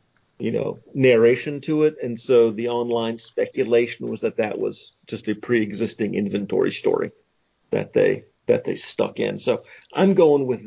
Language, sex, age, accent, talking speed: English, male, 50-69, American, 165 wpm